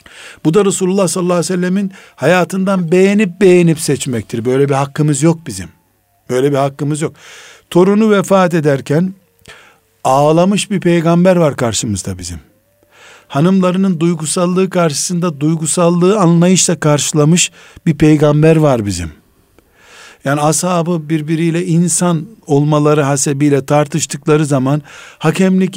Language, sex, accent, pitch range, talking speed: Turkish, male, native, 145-185 Hz, 110 wpm